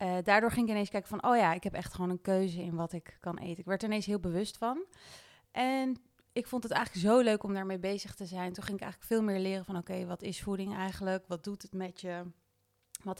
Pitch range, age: 180-210 Hz, 30-49